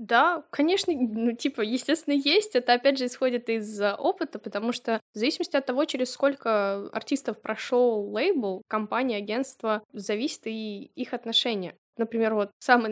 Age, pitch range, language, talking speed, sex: 10-29, 210-260 Hz, Russian, 150 wpm, female